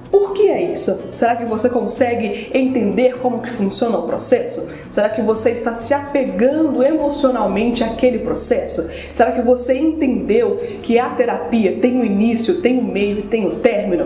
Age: 20-39